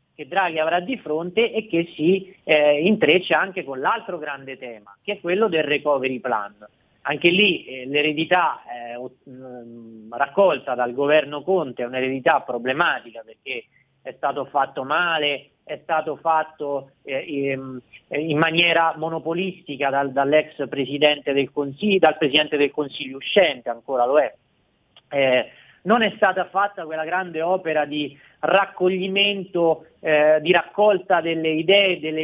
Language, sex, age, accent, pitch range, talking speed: Italian, male, 40-59, native, 140-180 Hz, 135 wpm